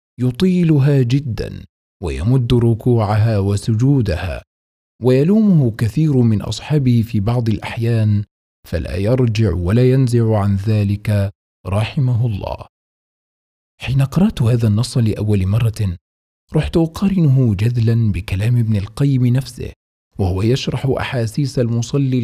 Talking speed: 100 wpm